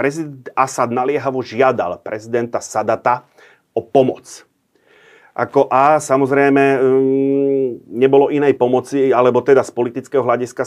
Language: Slovak